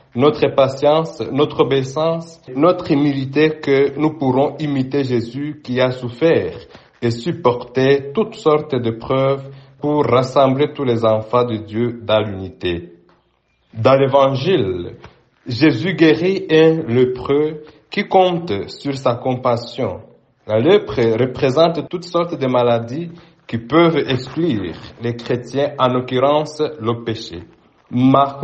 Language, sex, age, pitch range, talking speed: French, male, 60-79, 120-155 Hz, 120 wpm